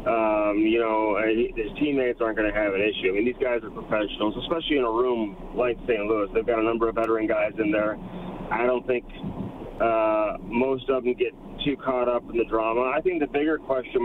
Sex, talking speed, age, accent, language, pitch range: male, 220 wpm, 30-49, American, English, 125-165 Hz